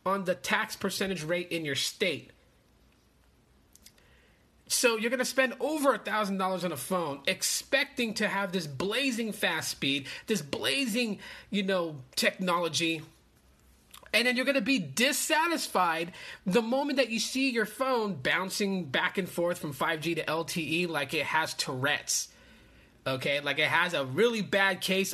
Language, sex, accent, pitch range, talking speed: English, male, American, 170-235 Hz, 150 wpm